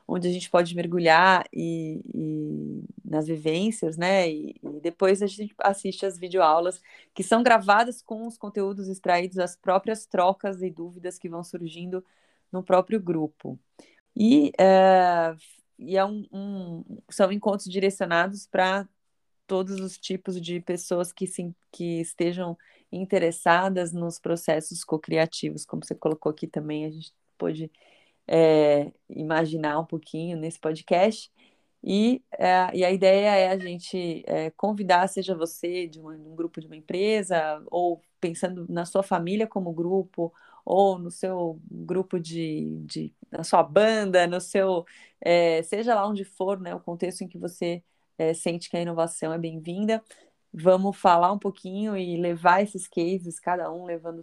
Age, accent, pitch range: 30-49, Brazilian, 165-195 Hz